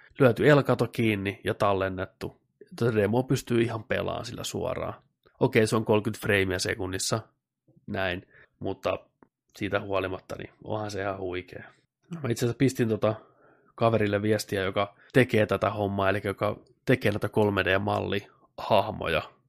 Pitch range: 105-120 Hz